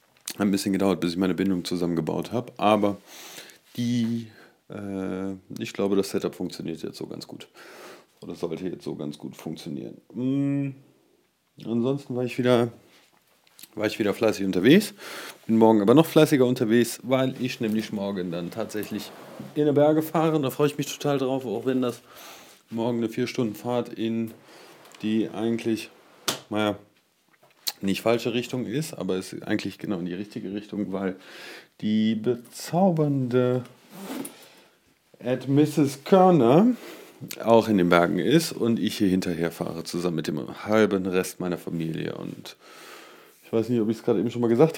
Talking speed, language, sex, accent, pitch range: 160 wpm, English, male, German, 100-135 Hz